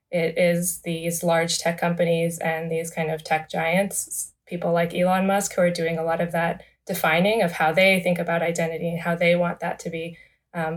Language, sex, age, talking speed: English, female, 20-39, 210 wpm